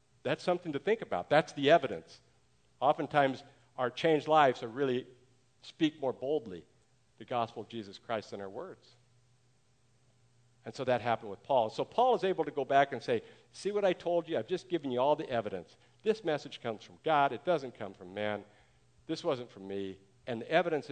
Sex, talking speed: male, 200 wpm